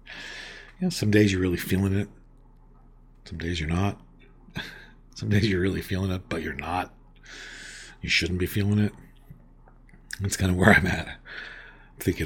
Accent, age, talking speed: American, 50-69, 155 wpm